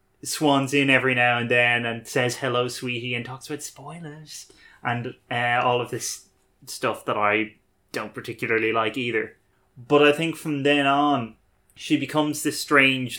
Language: English